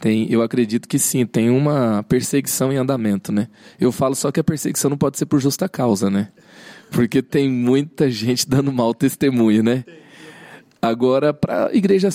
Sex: male